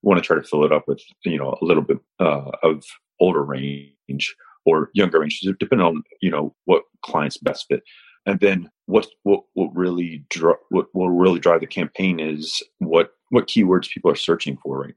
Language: English